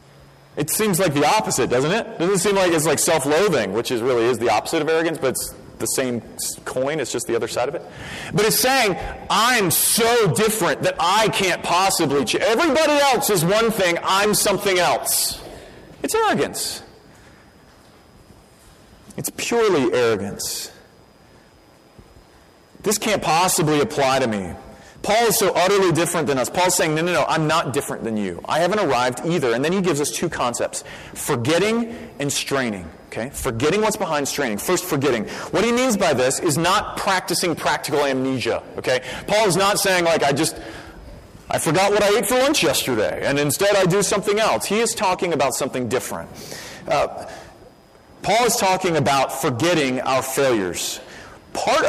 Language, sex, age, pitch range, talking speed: English, male, 30-49, 140-205 Hz, 170 wpm